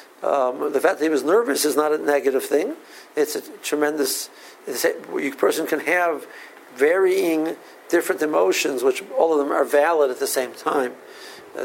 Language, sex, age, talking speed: English, male, 60-79, 175 wpm